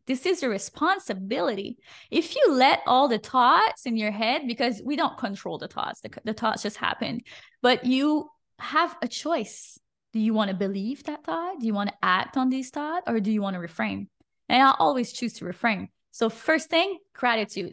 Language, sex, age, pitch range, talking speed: English, female, 20-39, 215-285 Hz, 205 wpm